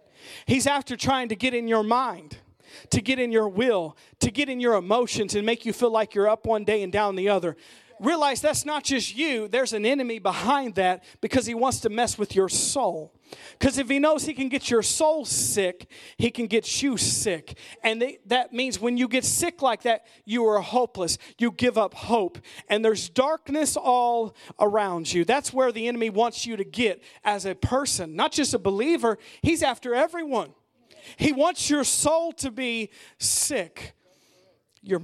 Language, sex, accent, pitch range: English, male, American, 190-255 Hz